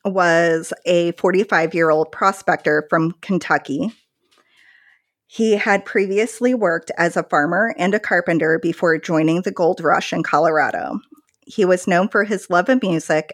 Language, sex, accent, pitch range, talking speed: English, female, American, 165-210 Hz, 150 wpm